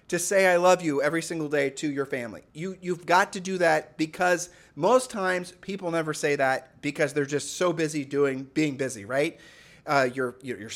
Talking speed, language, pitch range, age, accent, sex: 205 wpm, English, 140-180 Hz, 30-49, American, male